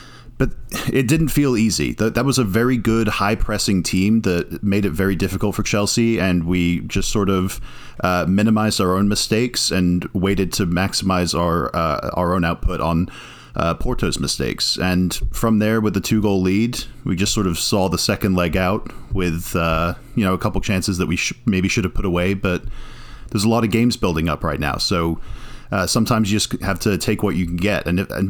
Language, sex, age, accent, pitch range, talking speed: English, male, 30-49, American, 90-115 Hz, 210 wpm